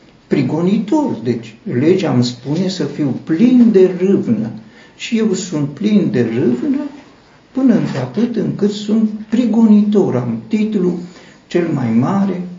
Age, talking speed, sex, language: 60-79, 130 wpm, male, Romanian